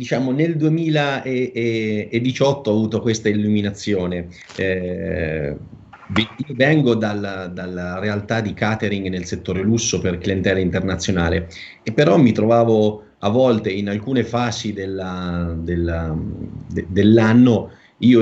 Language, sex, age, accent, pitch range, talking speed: Italian, male, 30-49, native, 90-115 Hz, 115 wpm